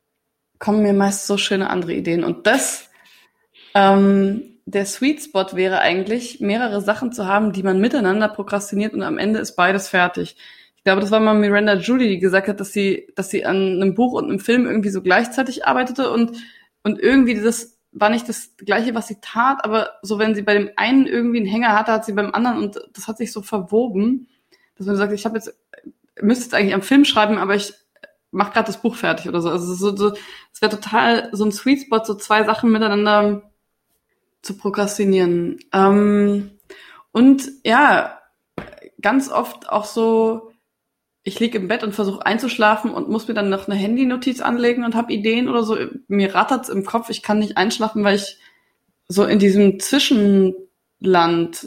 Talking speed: 190 wpm